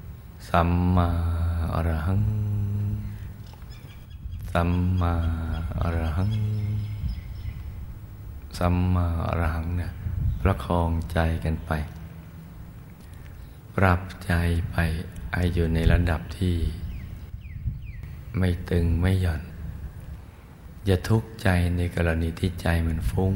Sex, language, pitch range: male, Thai, 85-95 Hz